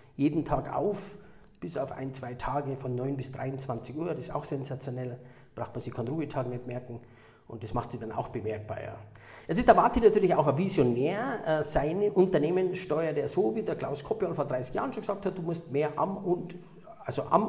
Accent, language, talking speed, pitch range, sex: Austrian, German, 205 wpm, 135-185 Hz, male